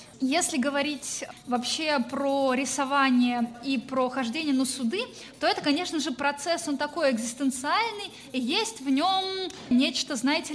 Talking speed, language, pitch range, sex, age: 135 wpm, Russian, 240-285 Hz, female, 20-39